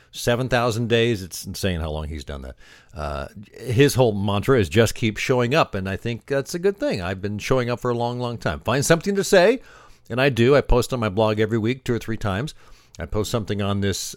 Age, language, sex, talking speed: 50-69, English, male, 240 wpm